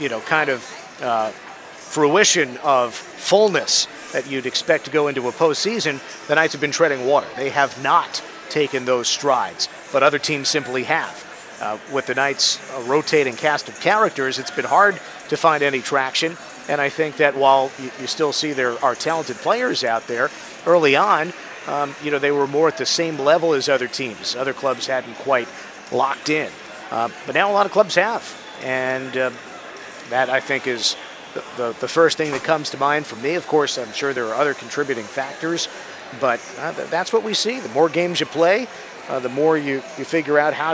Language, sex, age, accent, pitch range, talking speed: English, male, 50-69, American, 130-155 Hz, 200 wpm